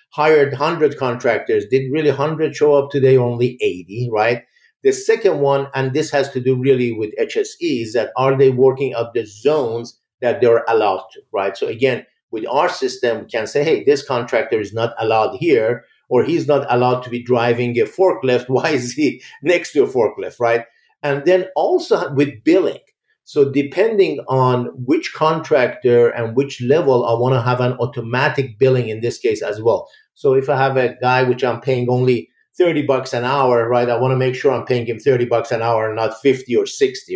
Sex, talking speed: male, 200 wpm